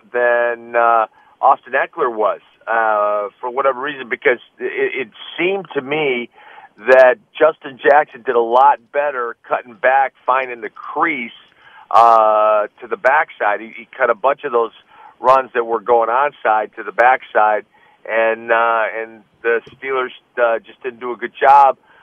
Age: 50-69